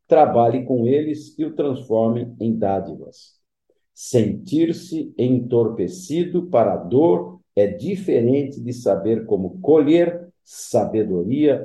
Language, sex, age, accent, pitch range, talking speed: Portuguese, male, 50-69, Brazilian, 100-150 Hz, 105 wpm